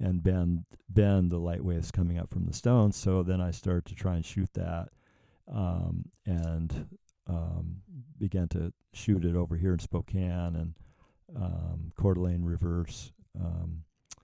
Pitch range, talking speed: 85-100 Hz, 155 wpm